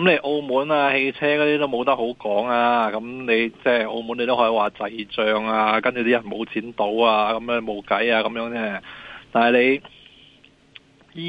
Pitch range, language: 110-140 Hz, Chinese